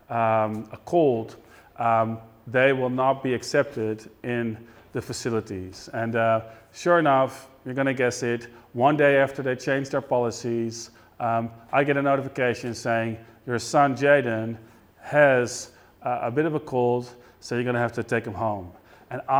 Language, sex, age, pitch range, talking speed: Dutch, male, 40-59, 120-140 Hz, 165 wpm